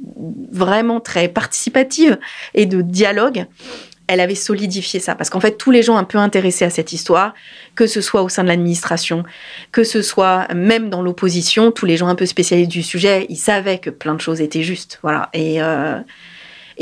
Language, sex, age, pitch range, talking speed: French, female, 30-49, 175-230 Hz, 195 wpm